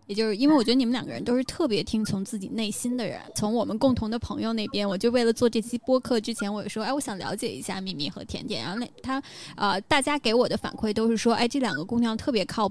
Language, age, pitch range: Chinese, 10-29, 210-255 Hz